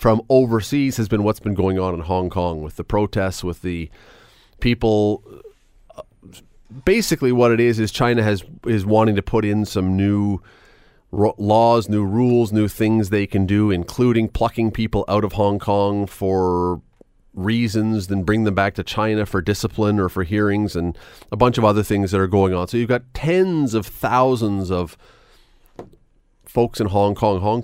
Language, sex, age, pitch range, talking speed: English, male, 30-49, 95-115 Hz, 180 wpm